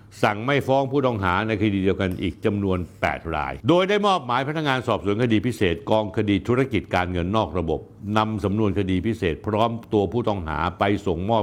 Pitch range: 85-115 Hz